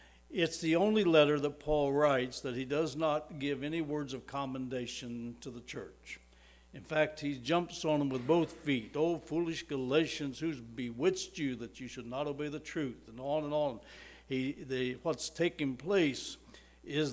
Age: 60-79